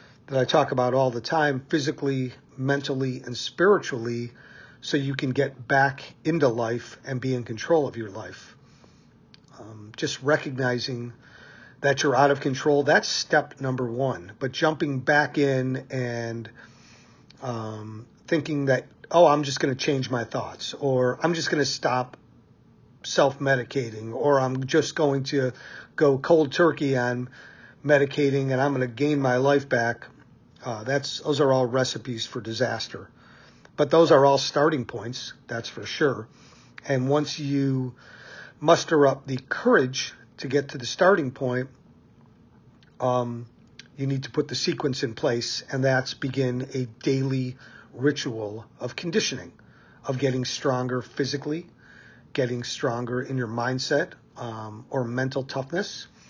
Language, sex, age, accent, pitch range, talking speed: English, male, 40-59, American, 125-140 Hz, 145 wpm